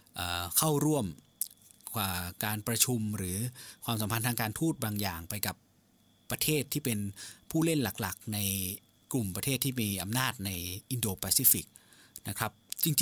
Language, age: Thai, 20-39